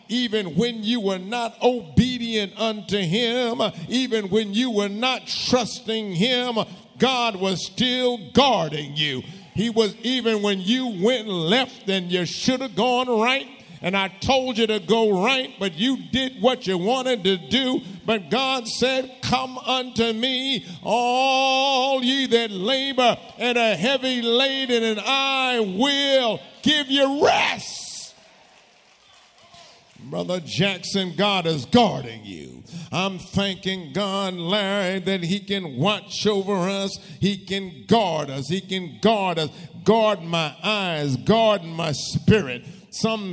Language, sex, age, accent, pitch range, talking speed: English, male, 50-69, American, 185-230 Hz, 135 wpm